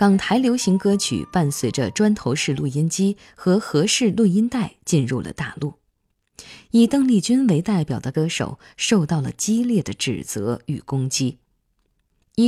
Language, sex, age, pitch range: Chinese, female, 20-39, 140-215 Hz